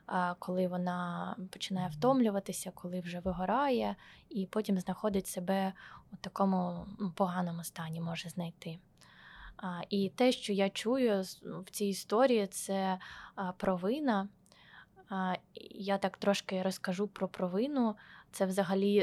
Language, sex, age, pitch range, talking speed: Ukrainian, female, 20-39, 185-215 Hz, 110 wpm